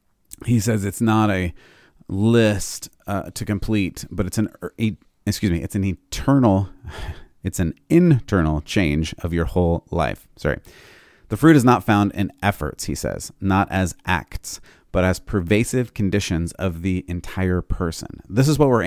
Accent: American